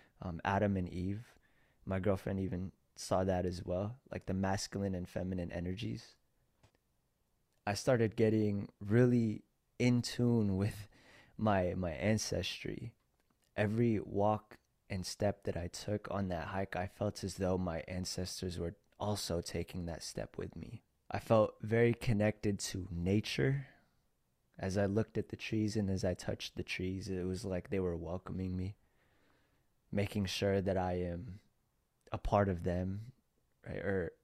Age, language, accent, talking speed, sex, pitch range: 20-39, English, American, 150 wpm, male, 95-105 Hz